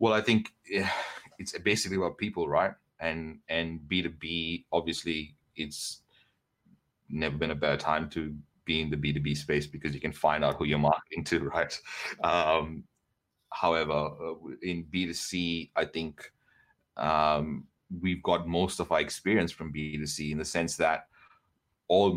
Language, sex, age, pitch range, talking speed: English, male, 30-49, 75-85 Hz, 170 wpm